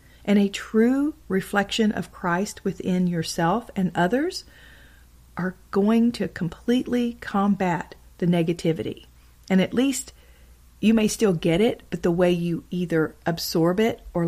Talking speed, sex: 140 wpm, female